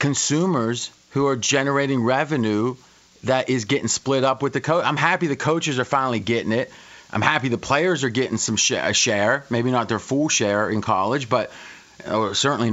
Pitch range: 115-150 Hz